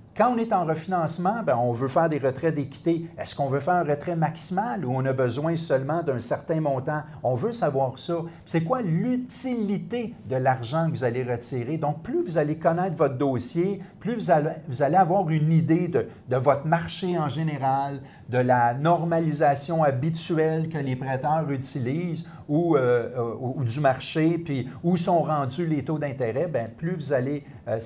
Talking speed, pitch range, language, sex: 185 wpm, 130-165 Hz, French, male